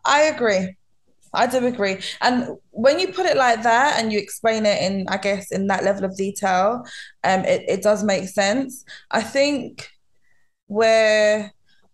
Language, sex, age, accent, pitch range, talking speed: English, female, 20-39, British, 195-235 Hz, 165 wpm